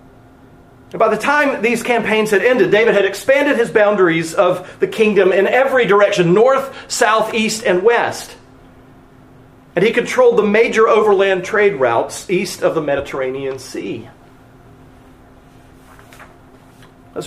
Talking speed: 130 wpm